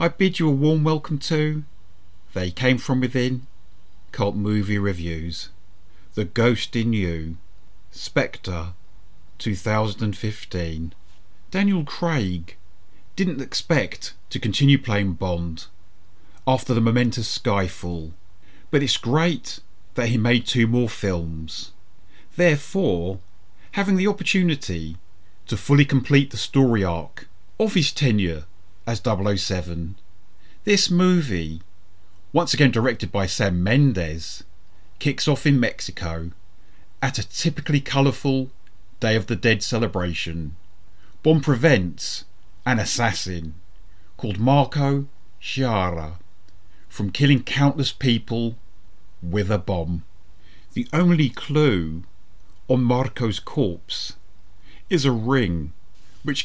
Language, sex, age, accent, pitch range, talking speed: English, male, 40-59, British, 90-135 Hz, 105 wpm